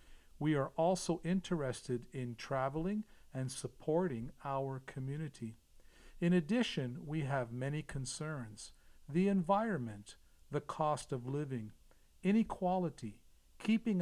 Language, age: English, 50-69